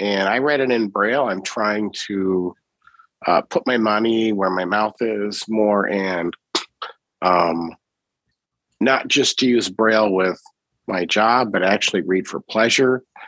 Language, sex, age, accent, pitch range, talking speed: English, male, 50-69, American, 90-110 Hz, 150 wpm